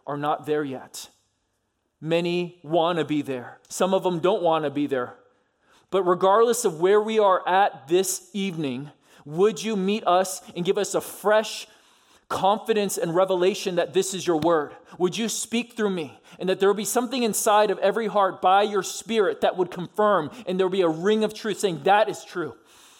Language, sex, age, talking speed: English, male, 20-39, 195 wpm